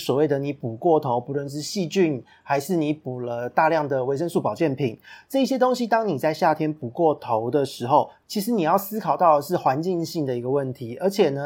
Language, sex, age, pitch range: Chinese, male, 30-49, 130-175 Hz